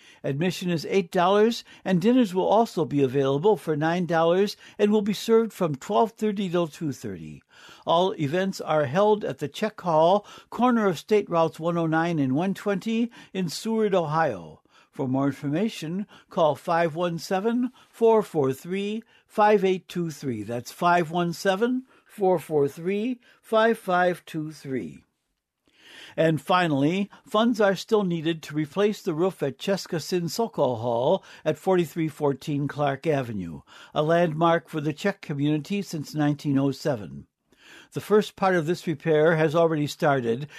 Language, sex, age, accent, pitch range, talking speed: English, male, 60-79, American, 150-200 Hz, 120 wpm